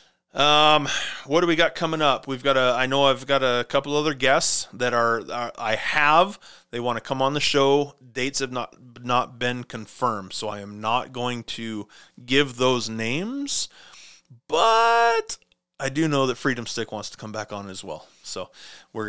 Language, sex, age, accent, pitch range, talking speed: English, male, 30-49, American, 110-140 Hz, 190 wpm